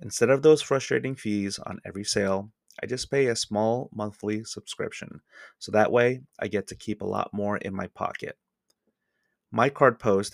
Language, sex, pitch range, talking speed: English, male, 100-115 Hz, 180 wpm